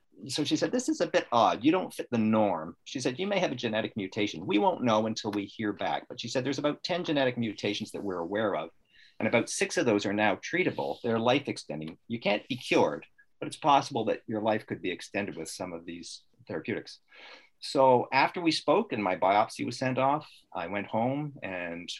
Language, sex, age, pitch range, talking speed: English, male, 50-69, 105-150 Hz, 225 wpm